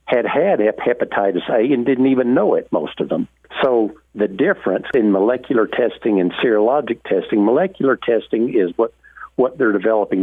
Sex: male